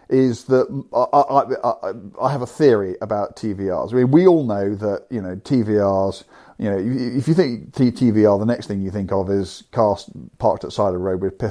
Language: English